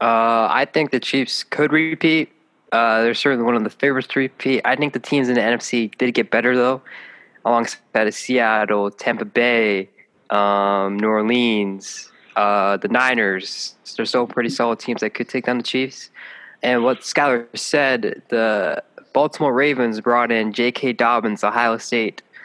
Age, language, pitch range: 20-39, English, 115-135 Hz